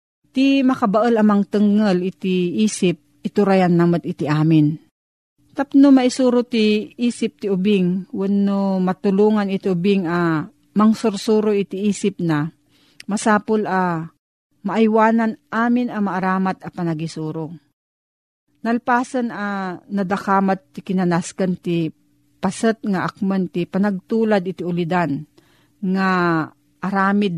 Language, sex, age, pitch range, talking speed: Filipino, female, 40-59, 165-205 Hz, 105 wpm